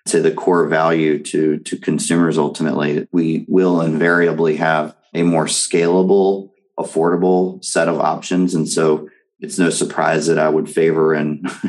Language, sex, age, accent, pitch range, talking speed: English, male, 30-49, American, 80-85 Hz, 150 wpm